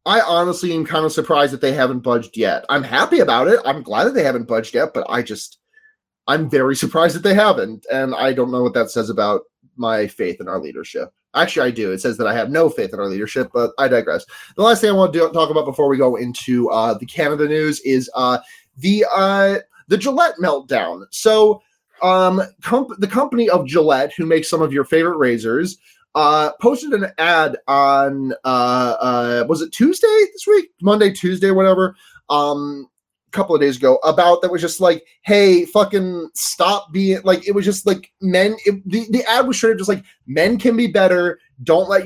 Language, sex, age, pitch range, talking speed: English, male, 30-49, 150-210 Hz, 215 wpm